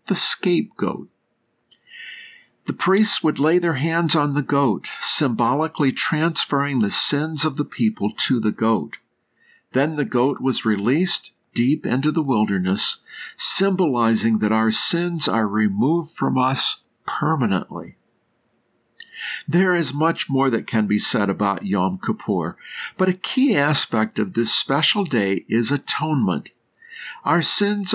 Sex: male